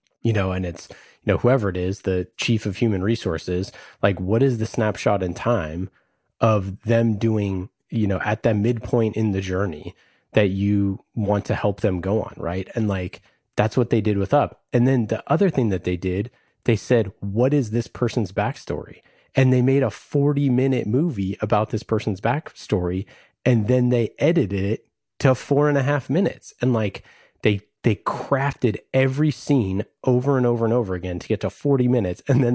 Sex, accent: male, American